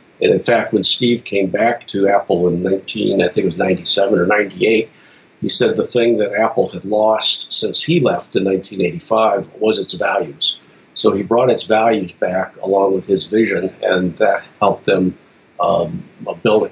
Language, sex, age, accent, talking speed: English, male, 50-69, American, 180 wpm